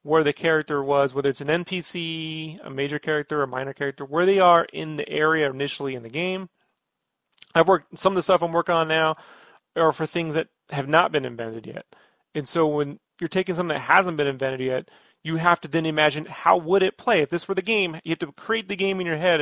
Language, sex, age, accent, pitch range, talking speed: English, male, 30-49, American, 140-180 Hz, 255 wpm